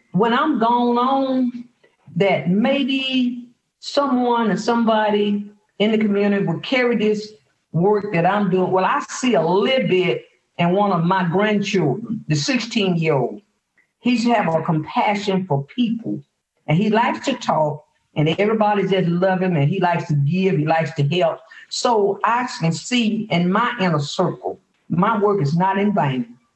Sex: female